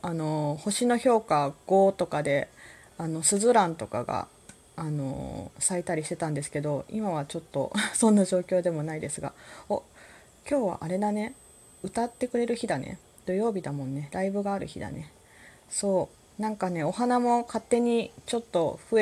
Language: Japanese